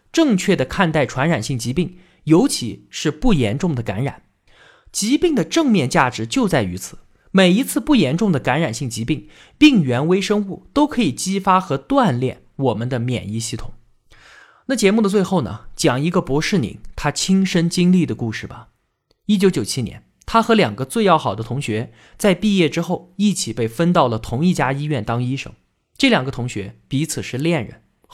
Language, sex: Chinese, male